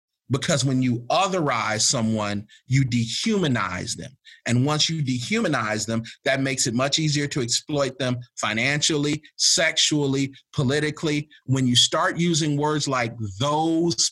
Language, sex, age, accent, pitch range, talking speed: English, male, 40-59, American, 115-155 Hz, 130 wpm